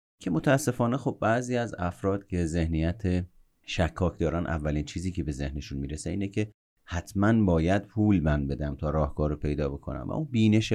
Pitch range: 80-105 Hz